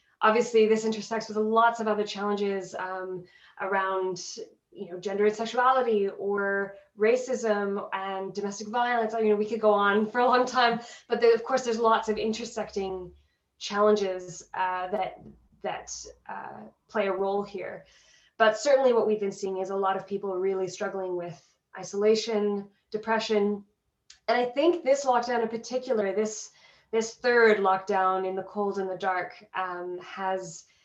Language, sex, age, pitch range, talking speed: English, female, 20-39, 190-230 Hz, 160 wpm